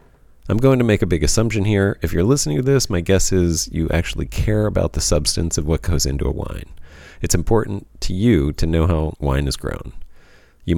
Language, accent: English, American